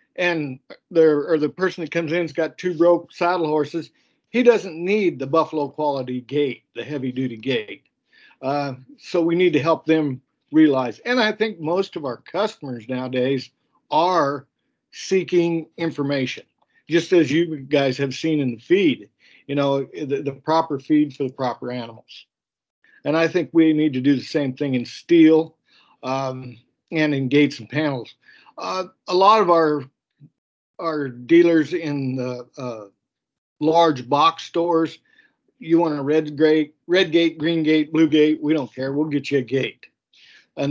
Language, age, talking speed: English, 50-69, 165 wpm